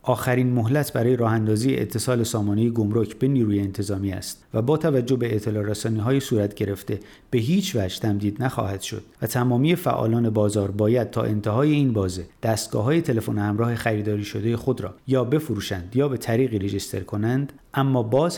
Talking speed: 165 wpm